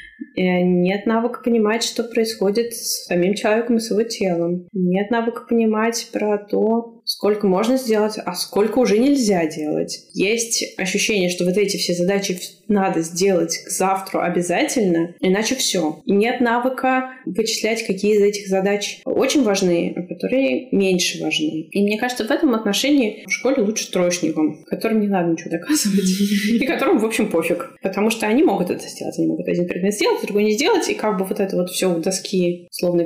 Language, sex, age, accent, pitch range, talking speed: Russian, female, 20-39, native, 175-230 Hz, 170 wpm